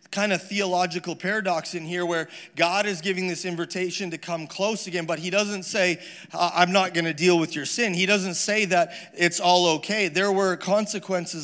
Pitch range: 170-195 Hz